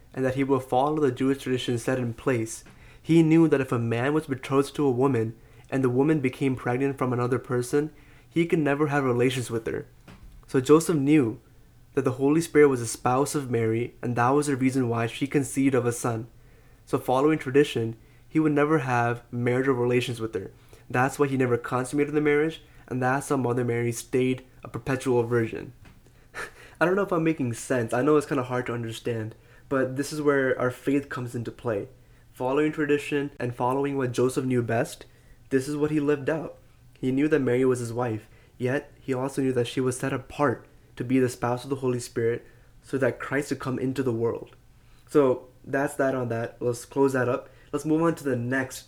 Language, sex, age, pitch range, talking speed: English, male, 20-39, 120-140 Hz, 210 wpm